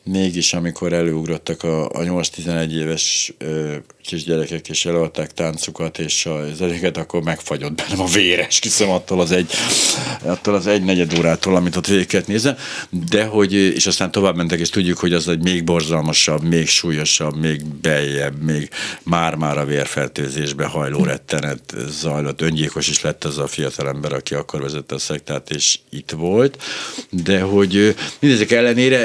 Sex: male